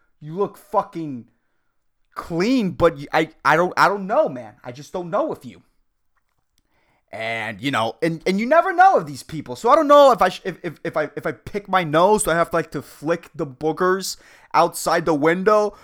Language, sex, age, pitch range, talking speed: English, male, 30-49, 170-260 Hz, 215 wpm